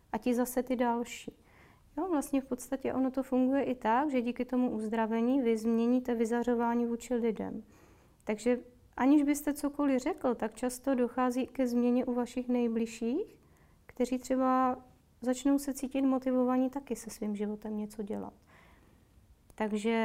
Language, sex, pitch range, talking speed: Czech, female, 220-255 Hz, 145 wpm